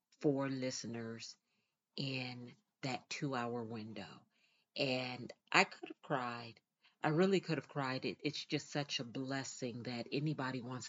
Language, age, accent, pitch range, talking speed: English, 40-59, American, 125-155 Hz, 140 wpm